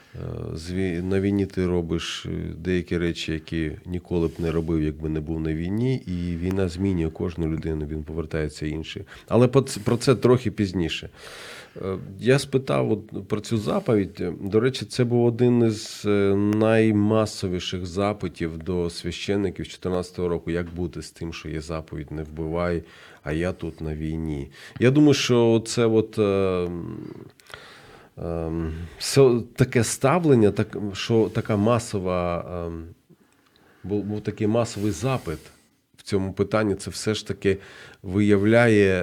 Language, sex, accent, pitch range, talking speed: Ukrainian, male, native, 85-110 Hz, 135 wpm